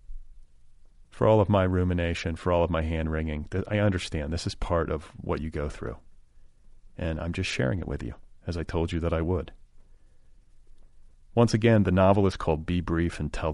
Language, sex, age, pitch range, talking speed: English, male, 30-49, 75-90 Hz, 195 wpm